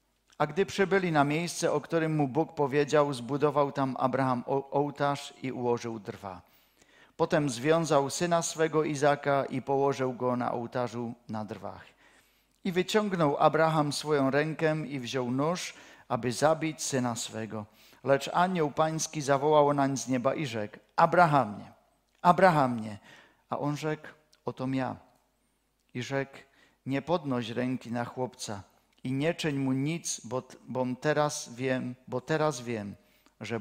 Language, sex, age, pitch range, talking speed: Czech, male, 50-69, 125-155 Hz, 145 wpm